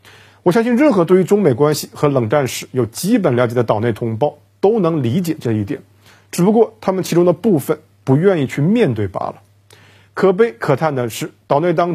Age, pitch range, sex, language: 50-69, 120-190 Hz, male, Chinese